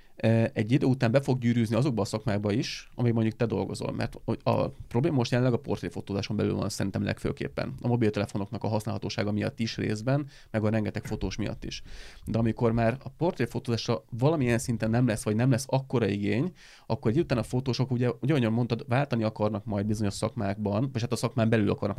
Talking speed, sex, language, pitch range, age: 190 wpm, male, Hungarian, 105-125 Hz, 30-49